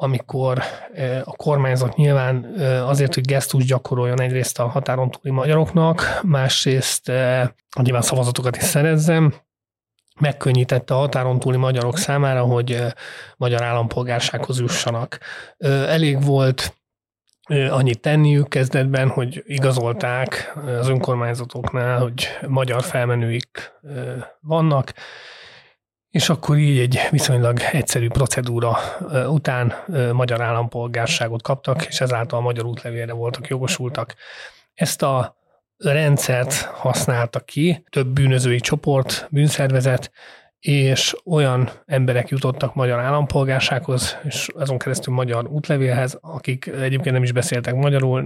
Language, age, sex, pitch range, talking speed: Hungarian, 30-49, male, 125-140 Hz, 105 wpm